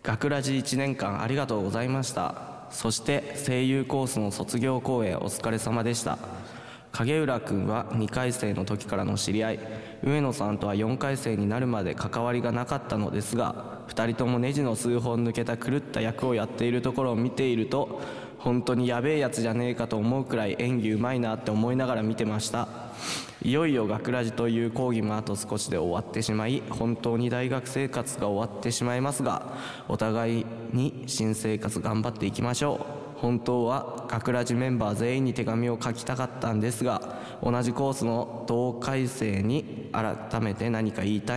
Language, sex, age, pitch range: Japanese, male, 20-39, 110-125 Hz